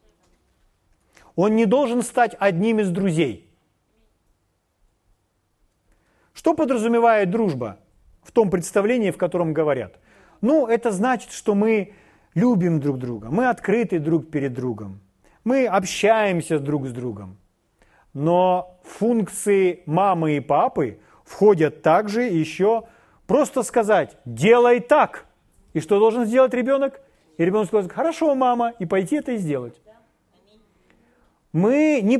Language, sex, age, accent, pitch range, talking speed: Russian, male, 40-59, native, 160-225 Hz, 115 wpm